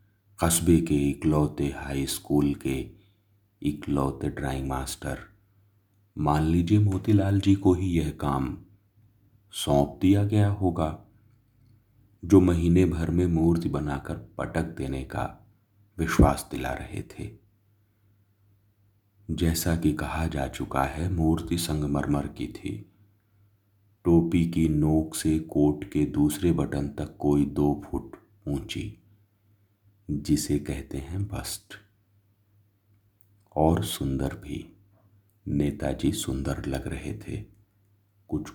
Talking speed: 110 wpm